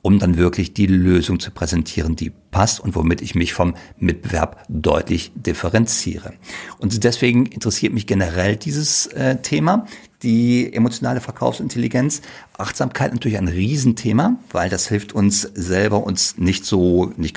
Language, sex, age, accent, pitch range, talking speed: German, male, 50-69, German, 100-130 Hz, 140 wpm